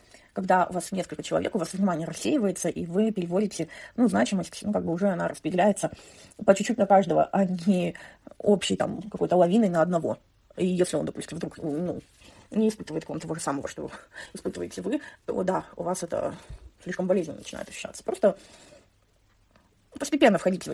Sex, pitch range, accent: female, 165-205 Hz, native